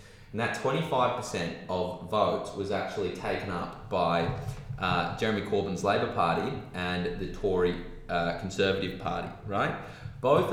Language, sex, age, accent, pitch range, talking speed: English, male, 20-39, Australian, 85-105 Hz, 130 wpm